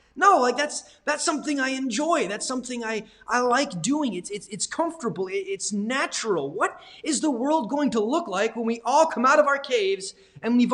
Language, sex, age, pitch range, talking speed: English, male, 20-39, 160-245 Hz, 205 wpm